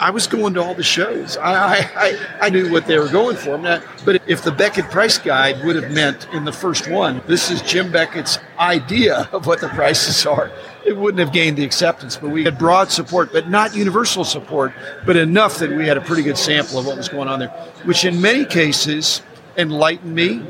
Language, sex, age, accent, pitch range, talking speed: English, male, 50-69, American, 155-185 Hz, 215 wpm